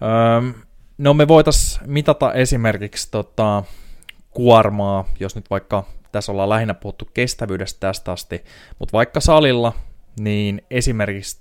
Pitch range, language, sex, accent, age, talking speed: 90-110 Hz, Finnish, male, native, 20-39, 115 wpm